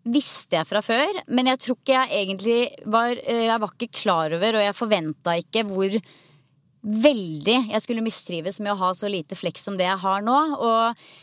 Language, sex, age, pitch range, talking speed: English, female, 20-39, 185-235 Hz, 190 wpm